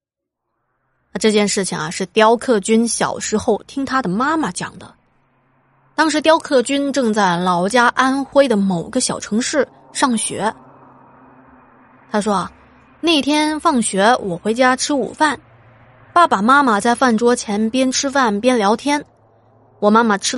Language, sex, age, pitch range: Chinese, female, 20-39, 190-265 Hz